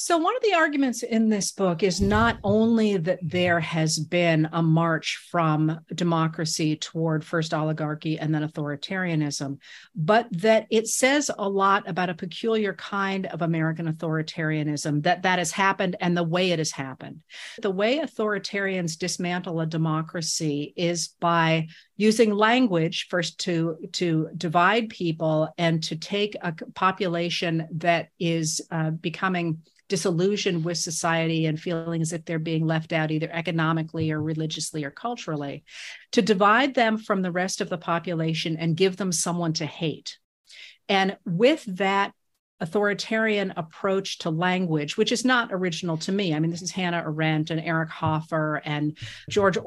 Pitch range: 160-195 Hz